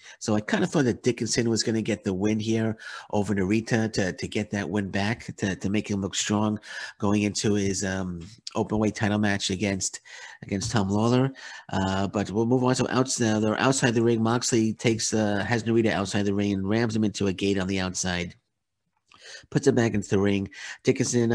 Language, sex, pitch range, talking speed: English, male, 95-110 Hz, 215 wpm